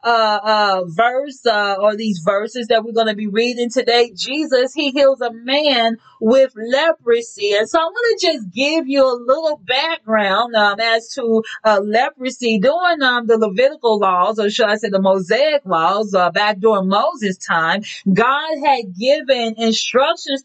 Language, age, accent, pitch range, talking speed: English, 40-59, American, 210-265 Hz, 170 wpm